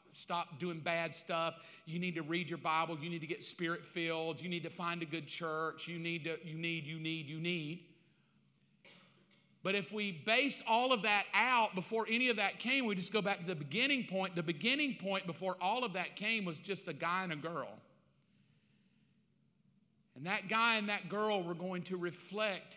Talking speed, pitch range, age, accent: 205 wpm, 155-195 Hz, 40-59, American